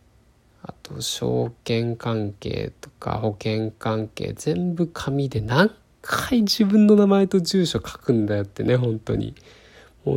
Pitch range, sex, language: 110-155 Hz, male, Japanese